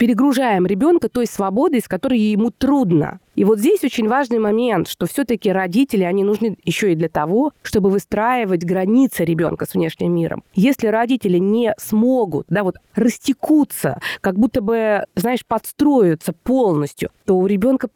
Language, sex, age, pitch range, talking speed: Russian, female, 20-39, 190-265 Hz, 155 wpm